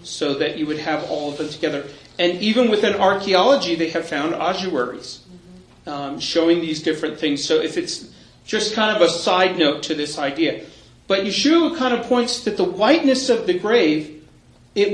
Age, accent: 40-59, American